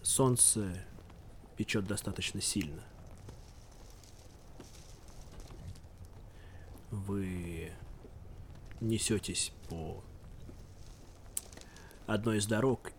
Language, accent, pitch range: Russian, native, 90-110 Hz